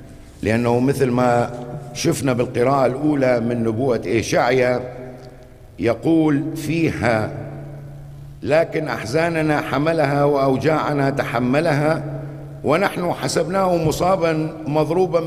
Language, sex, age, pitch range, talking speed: English, male, 60-79, 130-155 Hz, 80 wpm